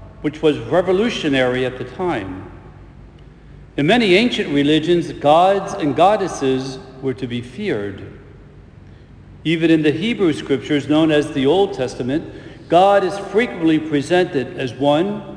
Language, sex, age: English, male, 60-79